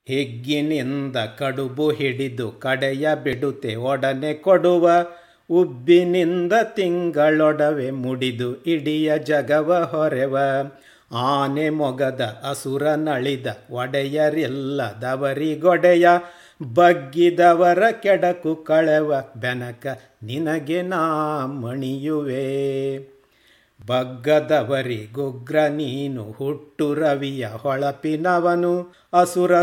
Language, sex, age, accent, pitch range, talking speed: Kannada, male, 50-69, native, 135-170 Hz, 65 wpm